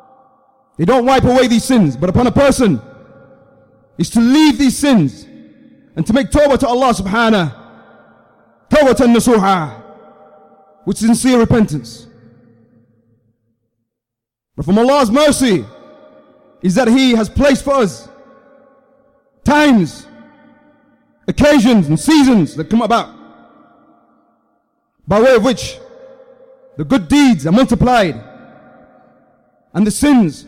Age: 30-49